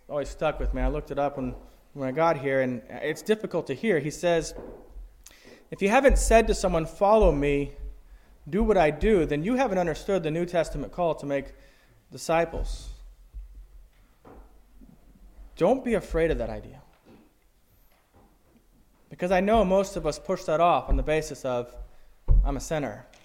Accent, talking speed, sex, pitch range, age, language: American, 170 wpm, male, 150-245 Hz, 20-39, English